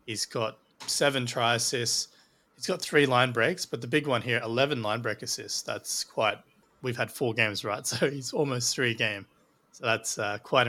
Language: English